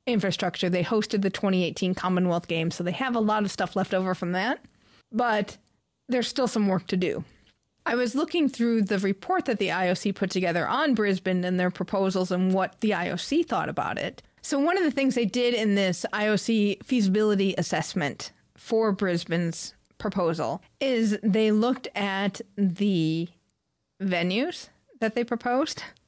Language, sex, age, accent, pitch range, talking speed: English, female, 40-59, American, 185-235 Hz, 165 wpm